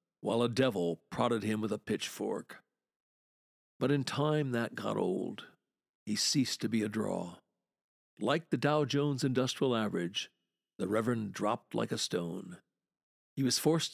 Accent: American